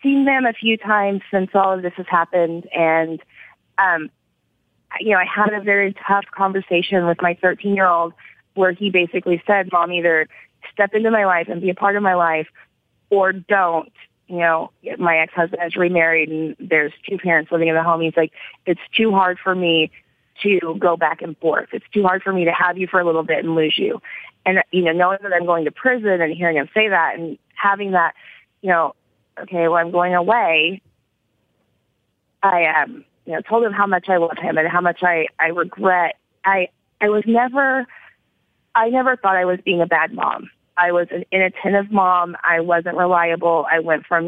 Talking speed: 205 wpm